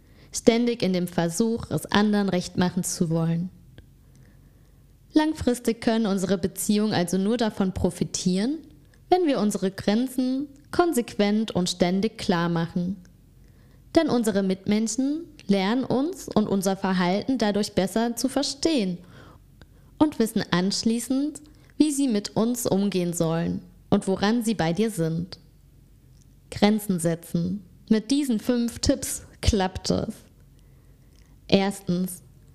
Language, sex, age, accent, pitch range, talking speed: German, female, 20-39, German, 180-235 Hz, 115 wpm